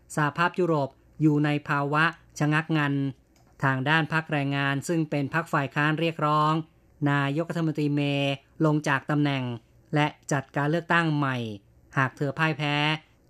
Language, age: Thai, 20-39